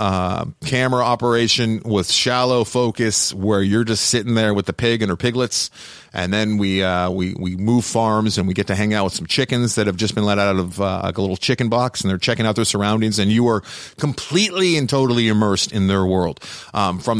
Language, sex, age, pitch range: English, male, 40-59, 100-125 Hz